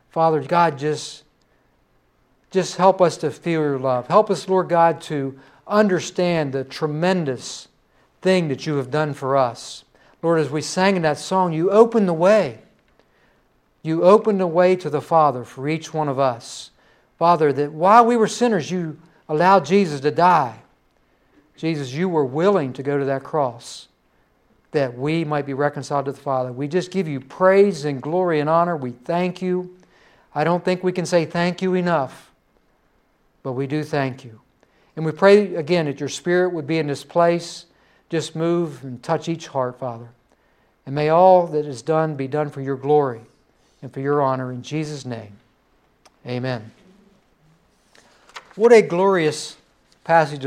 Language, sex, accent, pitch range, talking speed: English, male, American, 135-175 Hz, 170 wpm